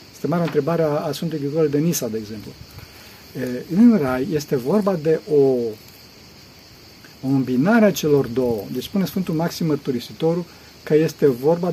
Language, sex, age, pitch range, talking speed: Romanian, male, 40-59, 140-185 Hz, 145 wpm